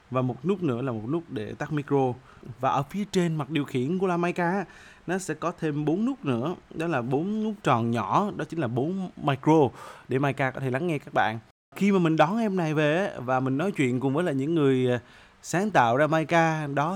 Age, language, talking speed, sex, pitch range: 20-39, Vietnamese, 235 wpm, male, 130-175 Hz